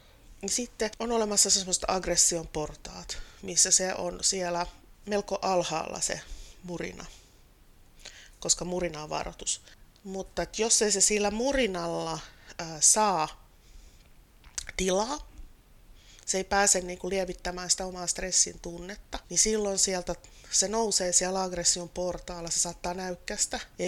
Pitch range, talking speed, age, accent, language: 170-200 Hz, 125 wpm, 30-49, native, Finnish